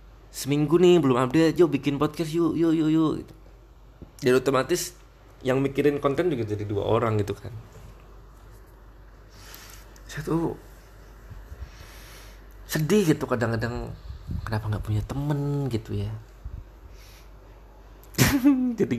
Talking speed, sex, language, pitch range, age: 105 wpm, male, Malay, 95-125 Hz, 20-39